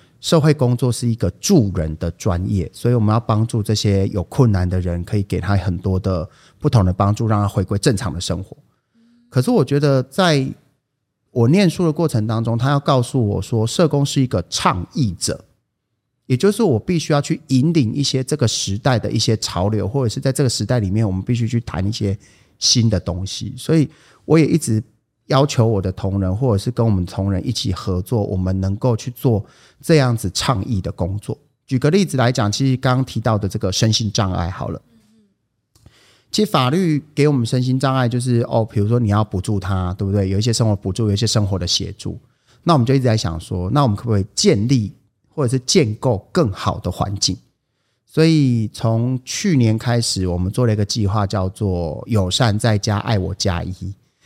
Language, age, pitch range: English, 30-49, 100-130 Hz